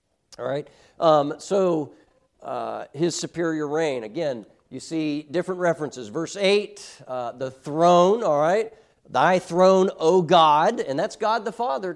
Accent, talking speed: American, 145 wpm